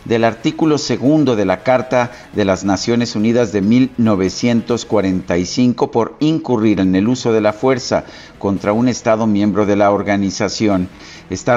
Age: 50-69